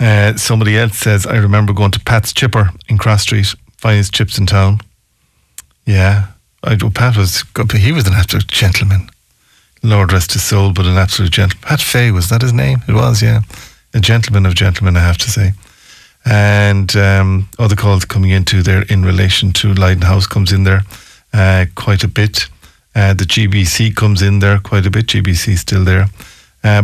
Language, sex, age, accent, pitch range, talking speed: English, male, 50-69, Irish, 95-110 Hz, 190 wpm